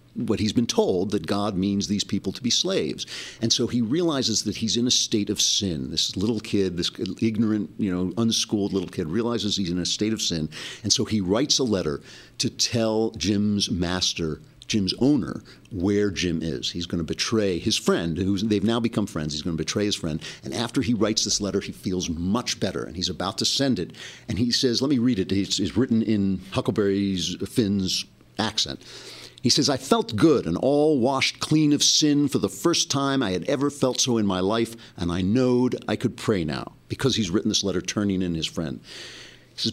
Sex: male